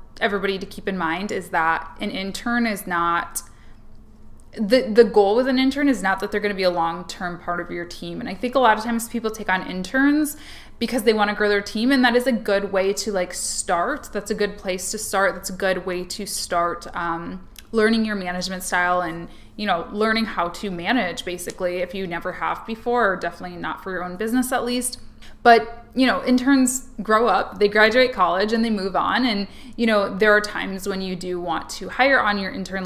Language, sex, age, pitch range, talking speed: English, female, 20-39, 185-230 Hz, 225 wpm